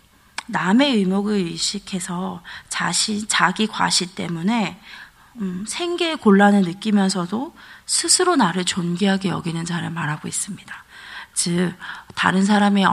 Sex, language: female, Korean